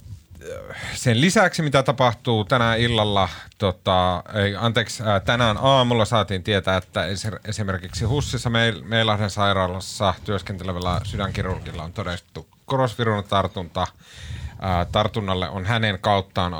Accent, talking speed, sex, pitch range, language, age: native, 100 wpm, male, 95-120 Hz, Finnish, 30-49